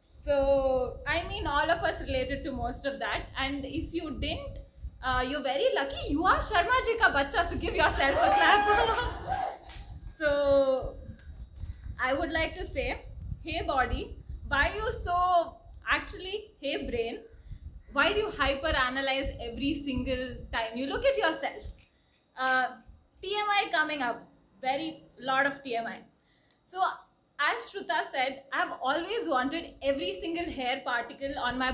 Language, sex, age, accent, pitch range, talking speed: English, female, 20-39, Indian, 255-305 Hz, 145 wpm